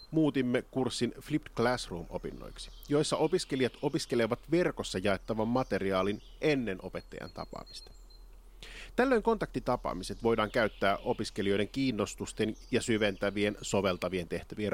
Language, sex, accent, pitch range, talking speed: Finnish, male, native, 100-135 Hz, 95 wpm